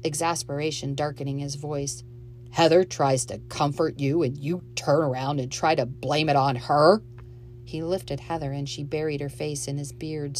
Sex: female